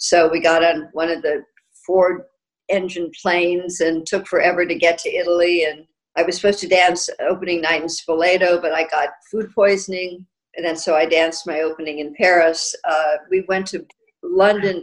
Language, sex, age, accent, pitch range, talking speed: English, female, 60-79, American, 170-215 Hz, 185 wpm